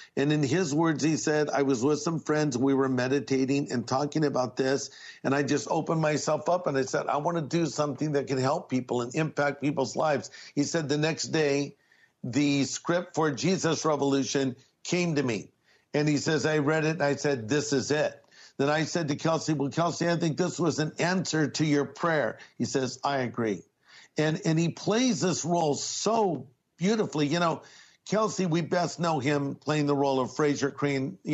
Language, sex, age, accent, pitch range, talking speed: English, male, 50-69, American, 140-170 Hz, 205 wpm